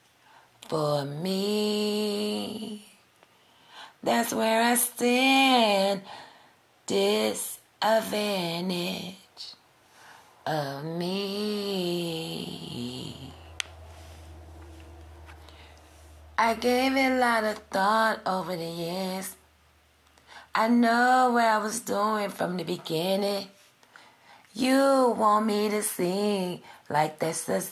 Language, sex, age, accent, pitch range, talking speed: English, female, 30-49, American, 170-220 Hz, 80 wpm